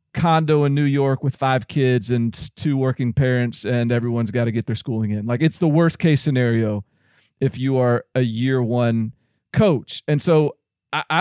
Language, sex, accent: English, male, American